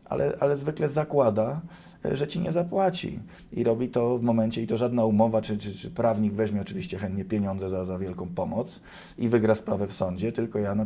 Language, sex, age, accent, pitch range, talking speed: Polish, male, 20-39, native, 95-115 Hz, 205 wpm